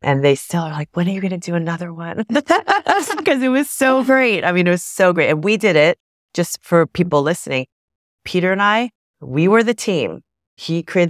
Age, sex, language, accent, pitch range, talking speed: 30-49, female, English, American, 135-185 Hz, 220 wpm